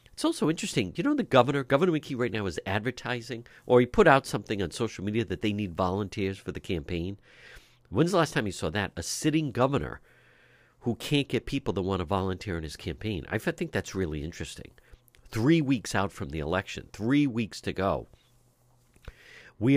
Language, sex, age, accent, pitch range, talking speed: English, male, 50-69, American, 90-130 Hz, 195 wpm